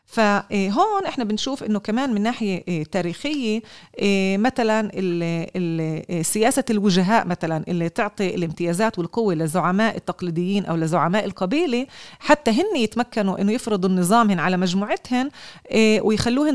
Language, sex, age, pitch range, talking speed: Hebrew, female, 30-49, 190-240 Hz, 110 wpm